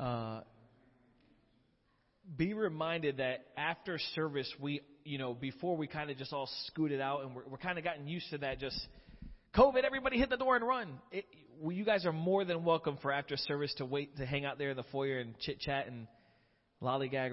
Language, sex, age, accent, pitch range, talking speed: English, male, 30-49, American, 140-180 Hz, 205 wpm